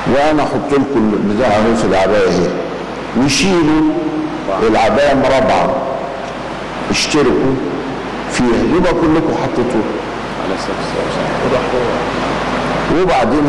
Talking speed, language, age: 70 wpm, Arabic, 60-79